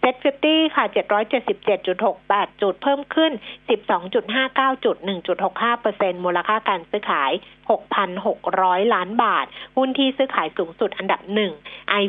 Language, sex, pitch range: Thai, female, 195-260 Hz